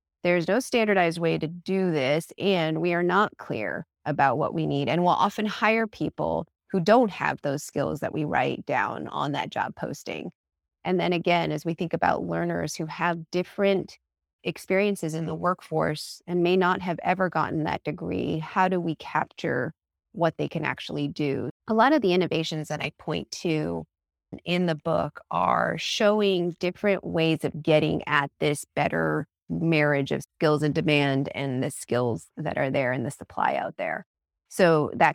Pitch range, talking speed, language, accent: 145-185 Hz, 180 wpm, English, American